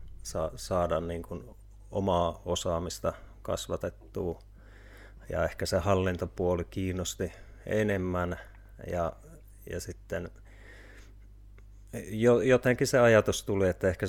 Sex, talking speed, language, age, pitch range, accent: male, 90 wpm, Finnish, 30-49, 90-100 Hz, native